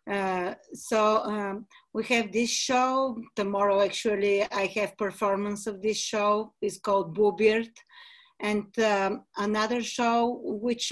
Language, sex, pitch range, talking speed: English, female, 200-235 Hz, 125 wpm